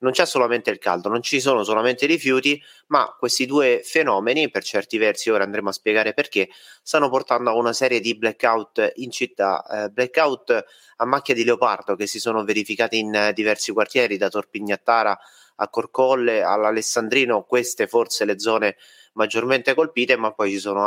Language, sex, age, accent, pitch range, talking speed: Italian, male, 30-49, native, 105-130 Hz, 175 wpm